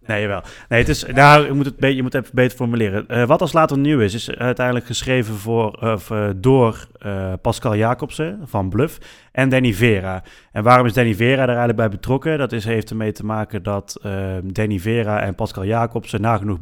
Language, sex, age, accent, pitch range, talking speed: Dutch, male, 30-49, Dutch, 105-120 Hz, 205 wpm